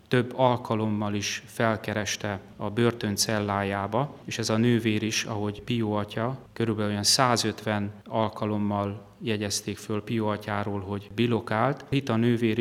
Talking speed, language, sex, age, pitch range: 130 wpm, Hungarian, male, 30-49, 105-120 Hz